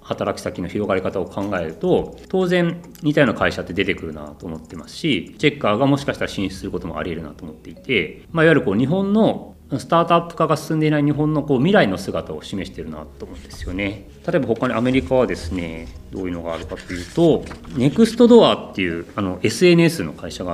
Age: 30-49